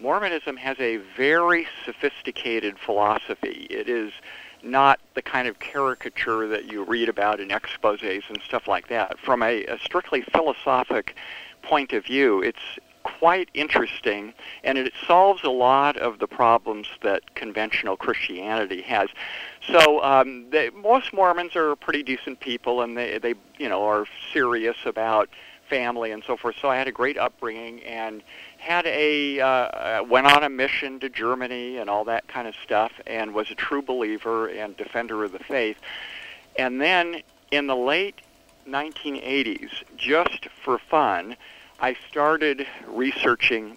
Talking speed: 150 wpm